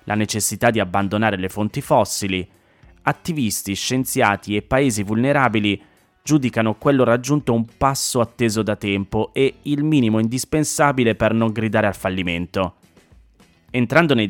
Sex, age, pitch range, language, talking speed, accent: male, 20-39, 100-125 Hz, Italian, 130 wpm, native